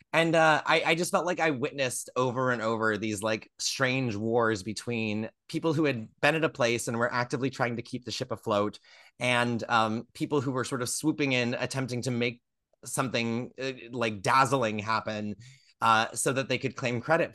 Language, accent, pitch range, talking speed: English, American, 110-145 Hz, 195 wpm